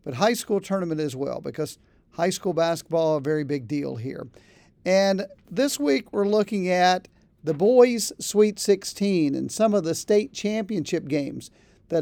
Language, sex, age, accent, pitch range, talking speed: English, male, 50-69, American, 160-205 Hz, 170 wpm